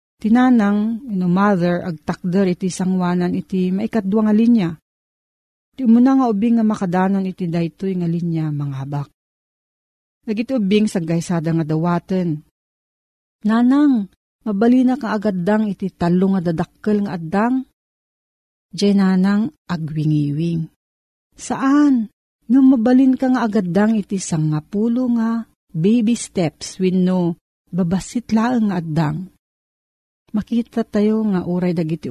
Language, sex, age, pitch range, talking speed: Filipino, female, 40-59, 170-220 Hz, 120 wpm